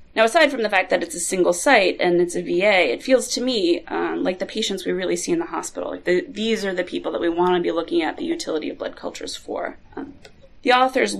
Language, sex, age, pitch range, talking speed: English, female, 30-49, 180-250 Hz, 255 wpm